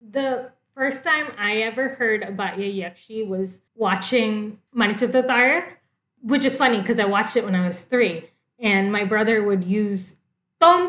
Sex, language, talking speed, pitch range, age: female, English, 155 wpm, 190-245 Hz, 20-39